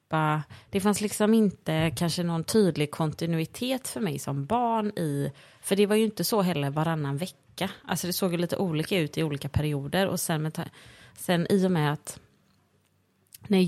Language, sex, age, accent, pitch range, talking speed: Swedish, female, 30-49, native, 145-185 Hz, 185 wpm